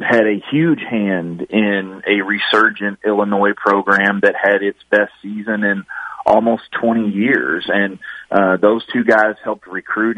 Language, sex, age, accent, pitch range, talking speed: English, male, 30-49, American, 95-105 Hz, 145 wpm